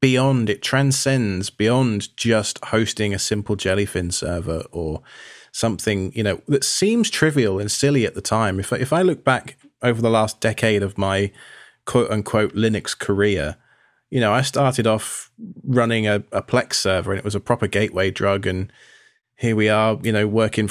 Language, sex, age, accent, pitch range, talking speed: English, male, 20-39, British, 105-135 Hz, 175 wpm